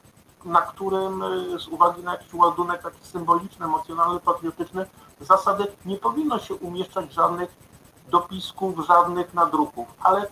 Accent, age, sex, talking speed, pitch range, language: native, 50-69, male, 120 wpm, 160-195 Hz, Polish